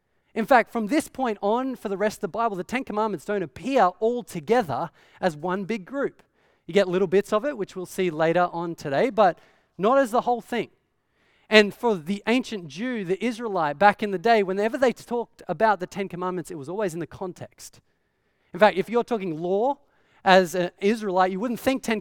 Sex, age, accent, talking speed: male, 30-49, Australian, 215 wpm